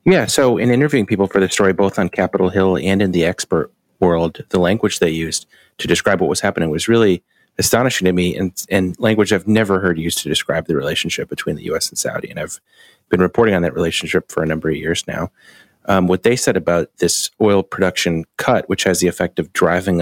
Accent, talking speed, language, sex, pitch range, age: American, 225 wpm, English, male, 85-100 Hz, 30-49